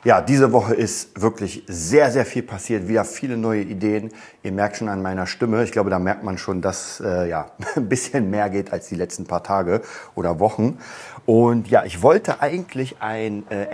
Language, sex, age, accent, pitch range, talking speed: German, male, 40-59, German, 95-115 Hz, 200 wpm